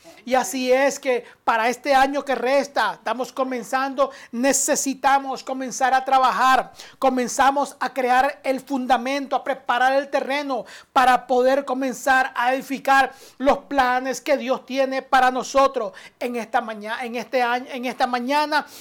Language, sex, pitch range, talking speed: Spanish, male, 245-275 Hz, 145 wpm